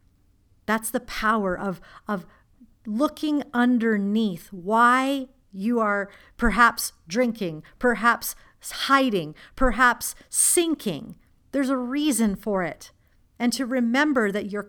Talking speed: 105 wpm